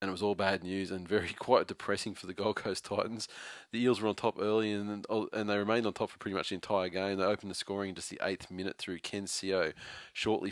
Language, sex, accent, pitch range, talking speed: English, male, Australian, 95-100 Hz, 260 wpm